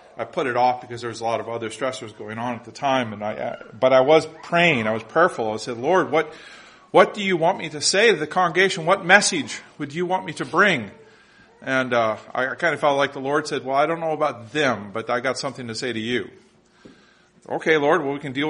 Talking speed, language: 250 wpm, English